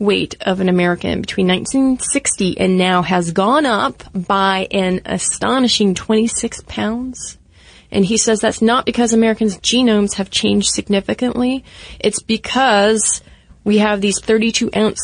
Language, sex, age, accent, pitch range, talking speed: English, female, 30-49, American, 185-220 Hz, 130 wpm